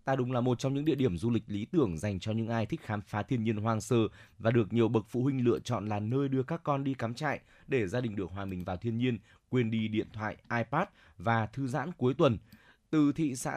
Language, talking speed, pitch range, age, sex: Vietnamese, 270 wpm, 110-135 Hz, 20-39, male